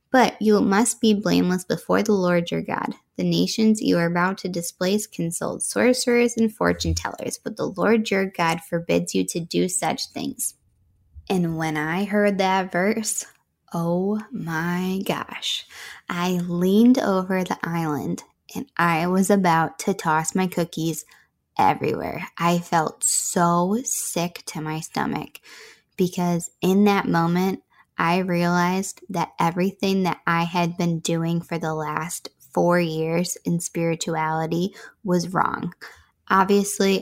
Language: English